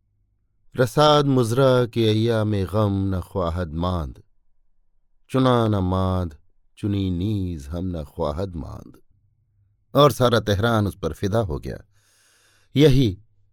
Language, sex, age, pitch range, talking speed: Hindi, male, 50-69, 90-115 Hz, 110 wpm